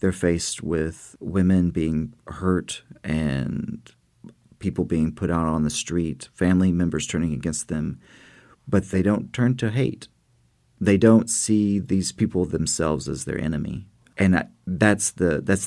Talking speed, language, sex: 140 wpm, English, male